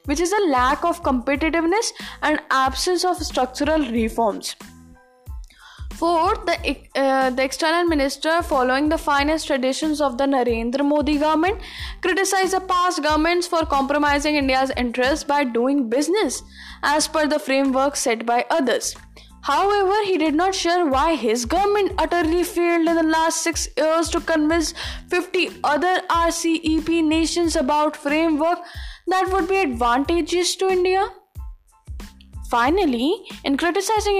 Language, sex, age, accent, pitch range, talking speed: English, female, 10-29, Indian, 265-340 Hz, 130 wpm